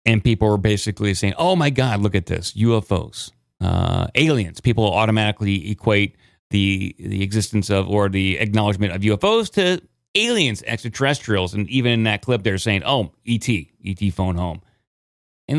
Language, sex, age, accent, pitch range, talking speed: English, male, 30-49, American, 105-150 Hz, 160 wpm